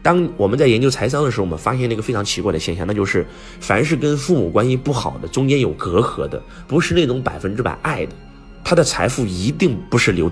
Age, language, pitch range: 30-49, Chinese, 85-130 Hz